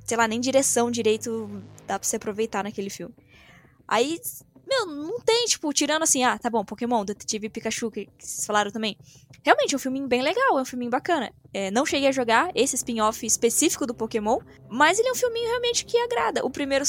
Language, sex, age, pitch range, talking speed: Portuguese, female, 10-29, 225-315 Hz, 205 wpm